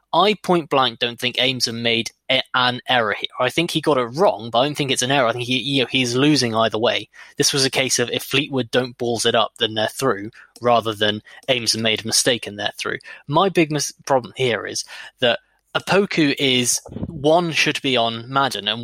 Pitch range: 120-155 Hz